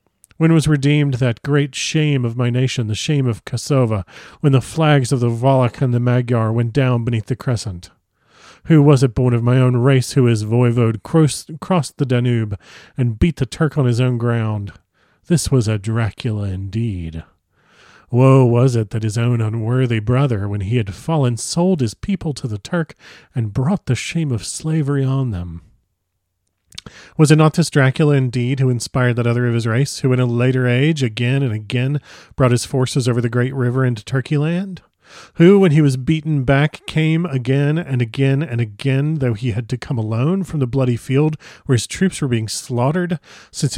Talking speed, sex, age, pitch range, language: 195 wpm, male, 40-59, 115-145 Hz, English